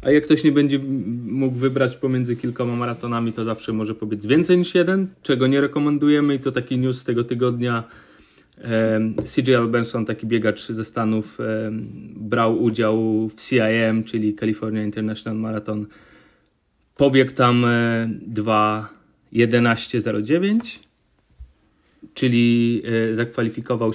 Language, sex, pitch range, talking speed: Polish, male, 110-130 Hz, 115 wpm